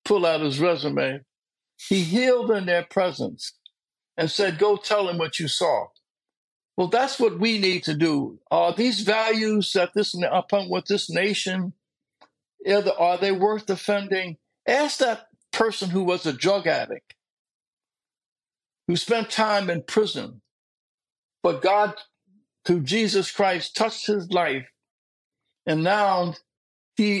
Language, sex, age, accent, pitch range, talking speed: English, male, 60-79, American, 165-205 Hz, 135 wpm